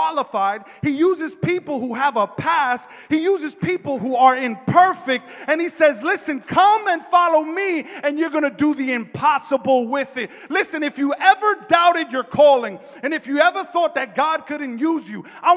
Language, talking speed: English, 185 wpm